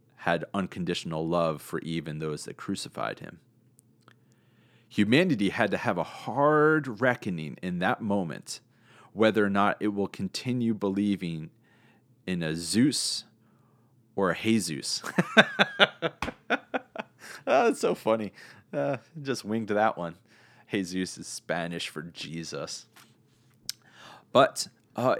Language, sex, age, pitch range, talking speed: English, male, 30-49, 90-120 Hz, 110 wpm